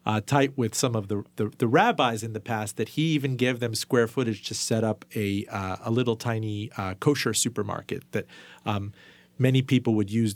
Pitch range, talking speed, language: 105-130 Hz, 210 wpm, English